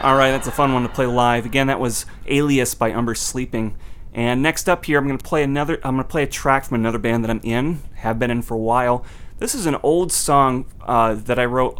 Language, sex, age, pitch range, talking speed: English, male, 30-49, 110-140 Hz, 265 wpm